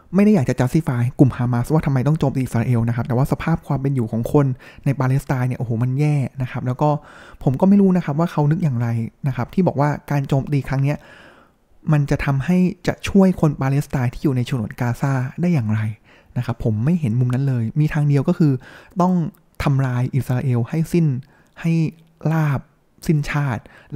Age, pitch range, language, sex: 20-39, 125-155 Hz, Thai, male